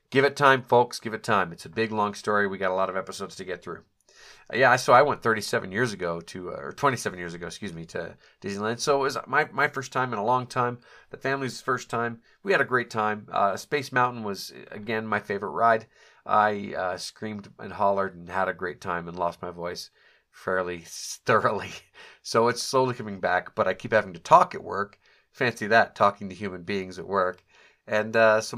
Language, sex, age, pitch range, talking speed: English, male, 40-59, 100-130 Hz, 225 wpm